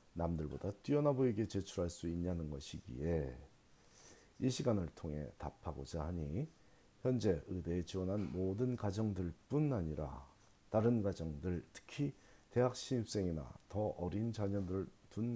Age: 40-59